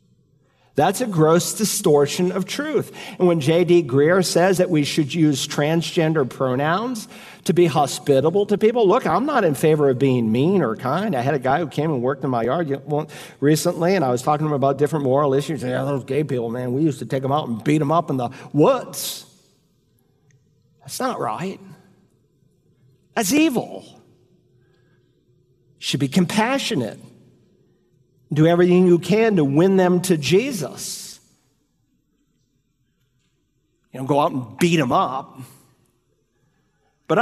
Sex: male